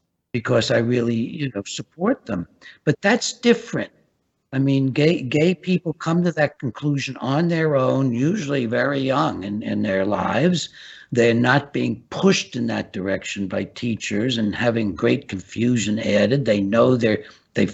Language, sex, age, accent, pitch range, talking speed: English, male, 60-79, American, 105-140 Hz, 155 wpm